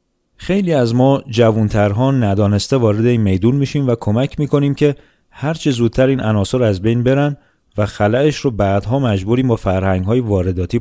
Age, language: 30-49, Persian